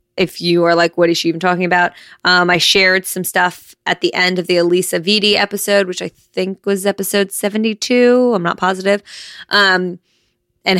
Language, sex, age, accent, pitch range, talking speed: English, female, 20-39, American, 170-195 Hz, 190 wpm